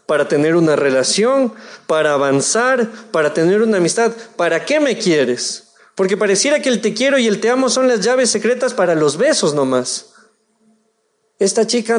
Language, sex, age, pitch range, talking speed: Spanish, male, 40-59, 200-265 Hz, 170 wpm